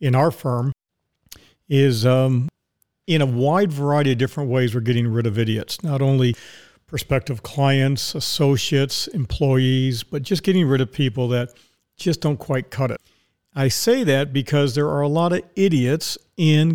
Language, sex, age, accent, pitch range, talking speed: English, male, 50-69, American, 130-150 Hz, 165 wpm